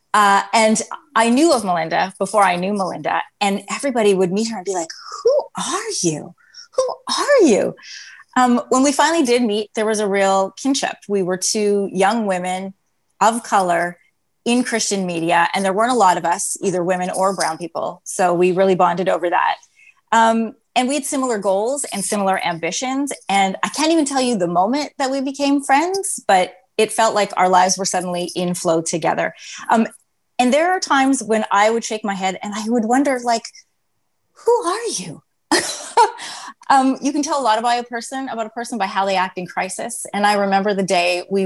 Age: 20-39